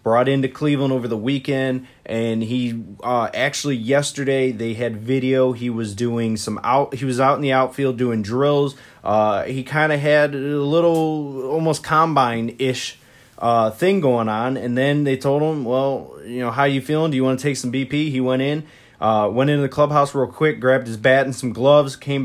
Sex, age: male, 20-39